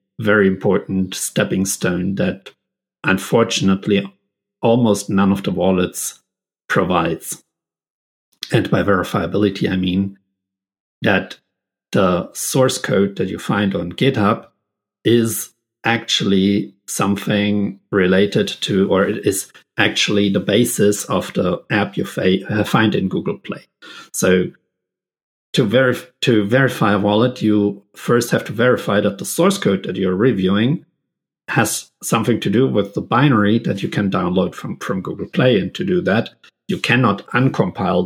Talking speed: 135 wpm